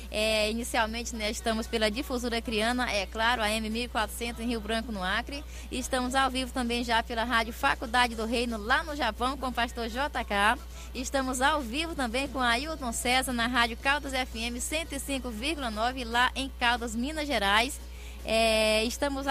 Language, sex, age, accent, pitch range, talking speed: Portuguese, female, 20-39, Brazilian, 230-270 Hz, 160 wpm